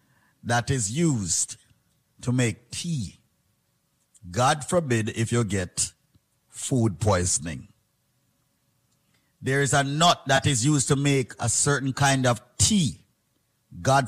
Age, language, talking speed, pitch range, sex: 50-69, English, 120 wpm, 130-200 Hz, male